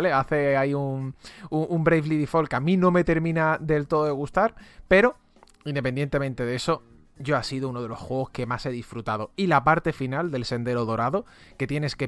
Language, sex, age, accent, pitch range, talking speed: English, male, 30-49, Spanish, 125-170 Hz, 210 wpm